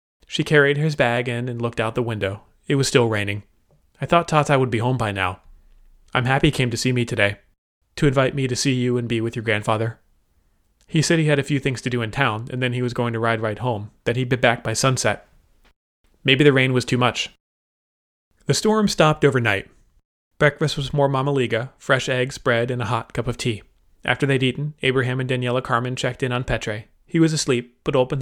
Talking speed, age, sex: 225 wpm, 30-49, male